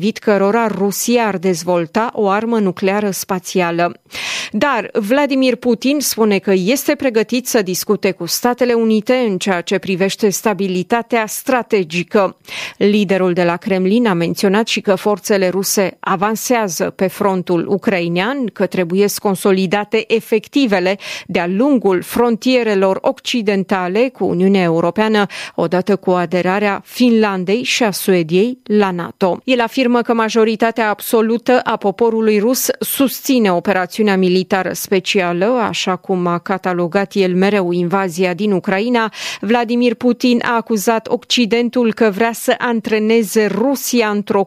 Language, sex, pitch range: Romanian, female, 190-235 Hz